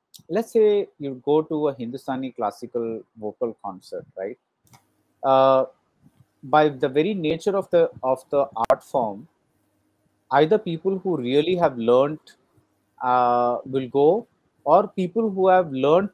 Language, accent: Hindi, native